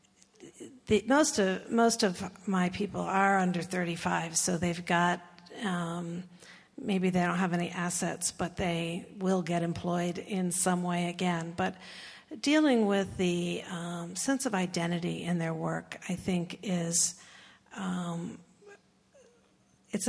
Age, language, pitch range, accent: 50-69, English, 175-205 Hz, American